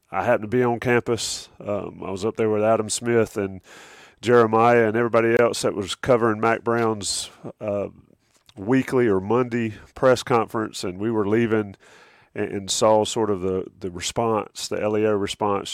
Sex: male